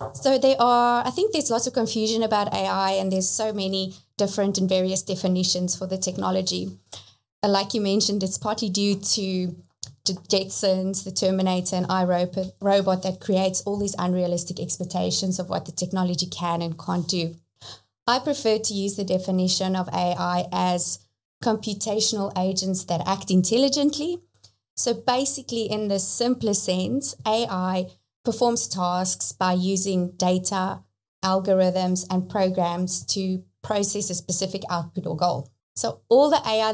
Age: 20-39